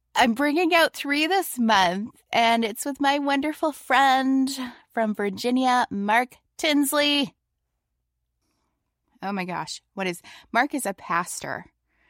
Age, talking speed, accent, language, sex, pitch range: 20-39, 125 wpm, American, English, female, 155-235 Hz